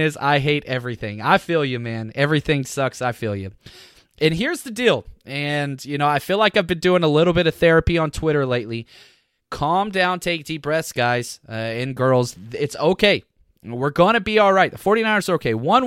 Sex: male